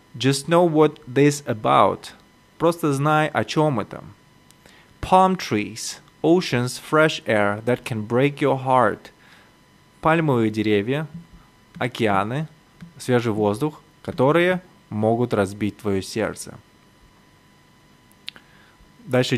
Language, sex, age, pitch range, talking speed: Russian, male, 20-39, 110-145 Hz, 95 wpm